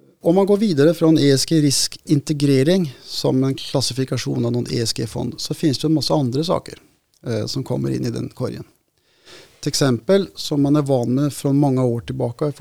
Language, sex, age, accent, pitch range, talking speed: Swedish, male, 30-49, Norwegian, 125-160 Hz, 180 wpm